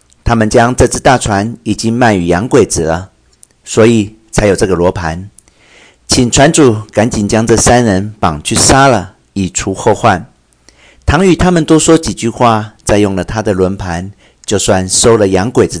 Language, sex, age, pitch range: Chinese, male, 50-69, 90-115 Hz